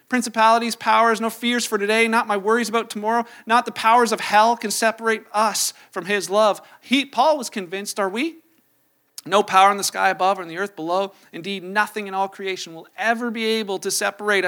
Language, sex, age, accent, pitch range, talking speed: English, male, 40-59, American, 170-225 Hz, 205 wpm